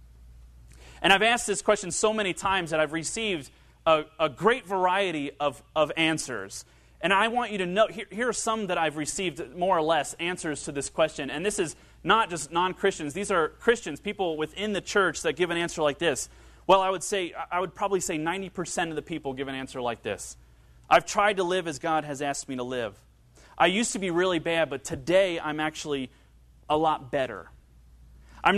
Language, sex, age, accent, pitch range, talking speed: English, male, 30-49, American, 135-195 Hz, 210 wpm